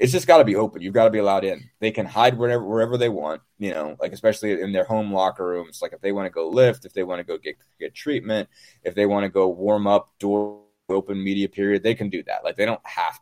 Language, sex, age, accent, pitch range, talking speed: English, male, 20-39, American, 90-110 Hz, 270 wpm